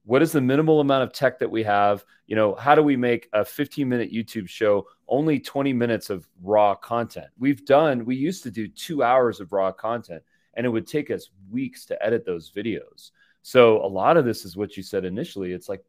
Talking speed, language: 225 wpm, English